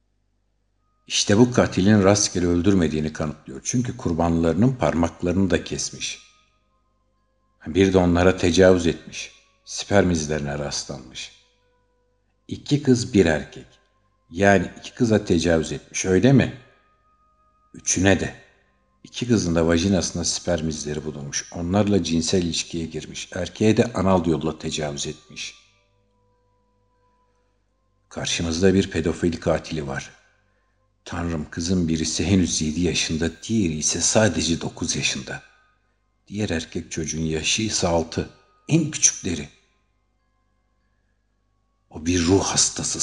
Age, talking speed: 60-79, 105 wpm